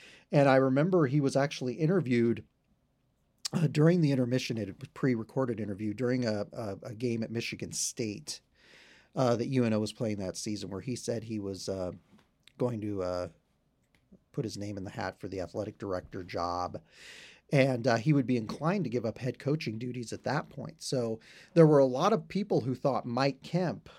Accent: American